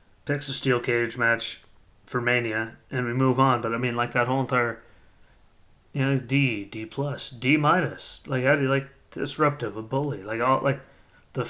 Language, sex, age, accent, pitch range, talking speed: English, male, 30-49, American, 110-135 Hz, 190 wpm